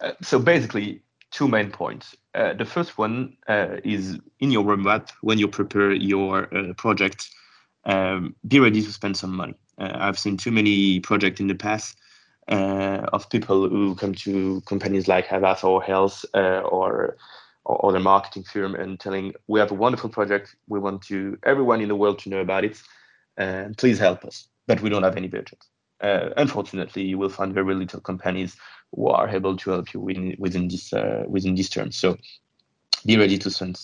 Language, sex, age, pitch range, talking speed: English, male, 30-49, 95-105 Hz, 195 wpm